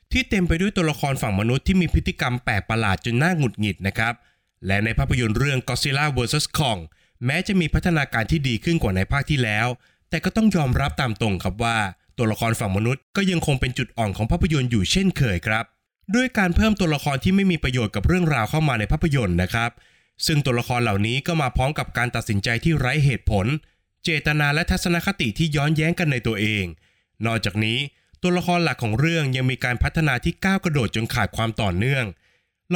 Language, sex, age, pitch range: Thai, male, 20-39, 110-155 Hz